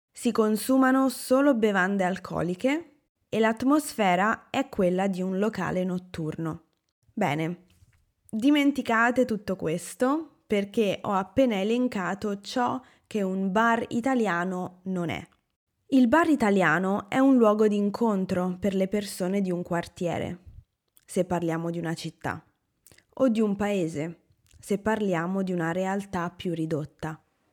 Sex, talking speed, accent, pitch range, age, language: female, 125 wpm, native, 175-220 Hz, 20-39, Italian